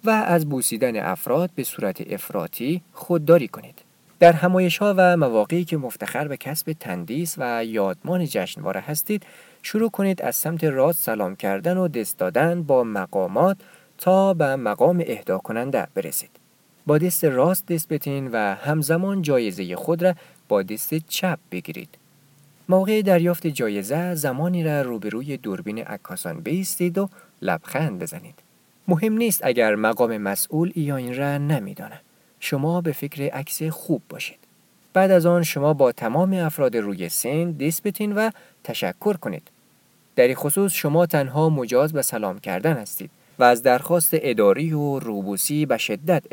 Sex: male